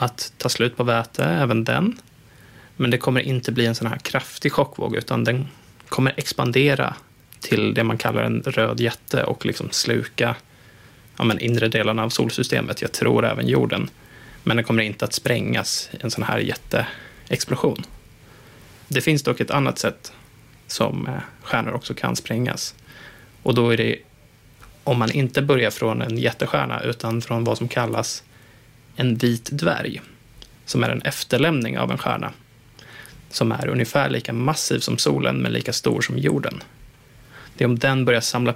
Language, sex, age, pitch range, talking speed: Swedish, male, 20-39, 115-135 Hz, 165 wpm